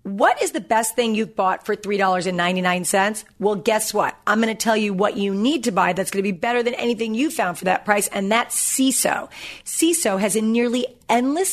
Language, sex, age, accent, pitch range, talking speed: English, female, 40-59, American, 210-295 Hz, 220 wpm